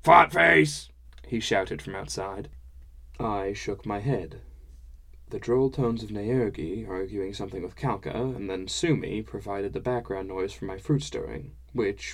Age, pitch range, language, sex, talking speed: 10-29, 75-115 Hz, English, male, 145 wpm